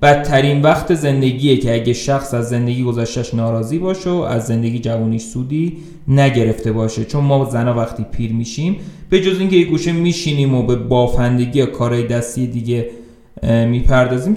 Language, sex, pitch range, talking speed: Persian, male, 125-175 Hz, 150 wpm